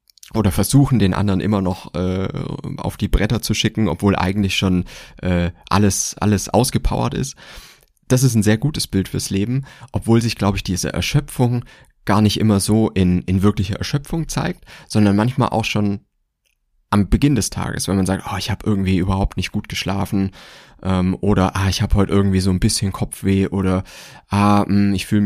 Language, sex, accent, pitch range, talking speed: German, male, German, 95-115 Hz, 185 wpm